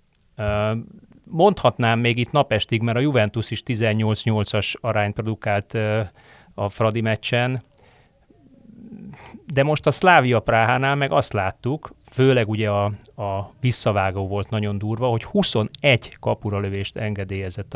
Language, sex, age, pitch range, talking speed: Hungarian, male, 30-49, 105-125 Hz, 115 wpm